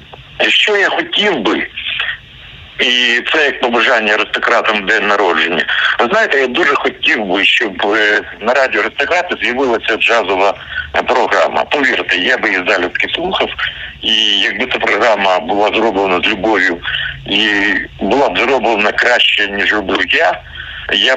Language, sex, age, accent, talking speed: Ukrainian, male, 60-79, native, 135 wpm